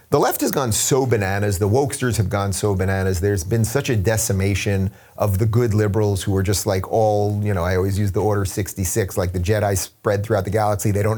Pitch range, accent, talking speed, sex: 100-120 Hz, American, 230 wpm, male